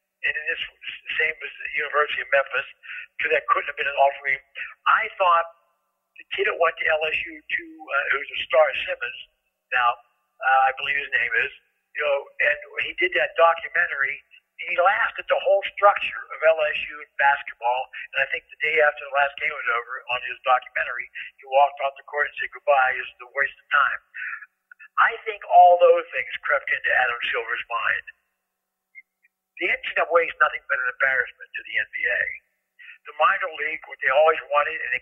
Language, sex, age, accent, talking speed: English, male, 60-79, American, 190 wpm